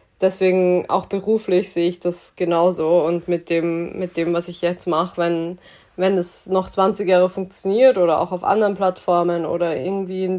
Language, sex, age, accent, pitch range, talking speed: German, female, 20-39, German, 180-195 Hz, 180 wpm